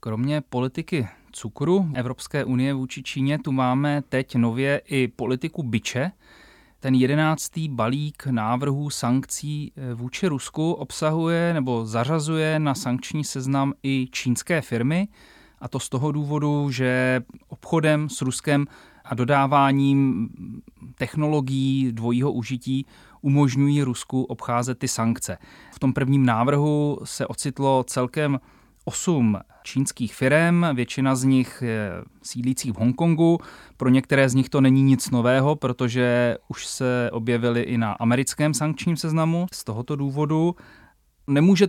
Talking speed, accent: 125 wpm, native